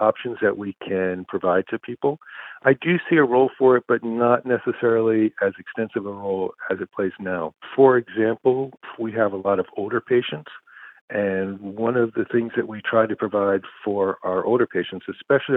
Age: 50-69